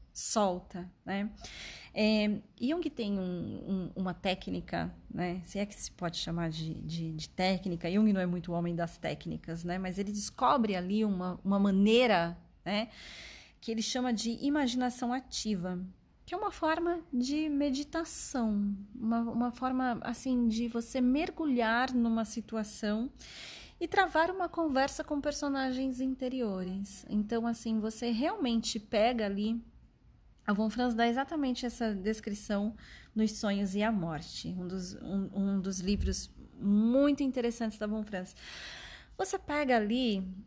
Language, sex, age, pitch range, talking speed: Portuguese, female, 30-49, 195-255 Hz, 140 wpm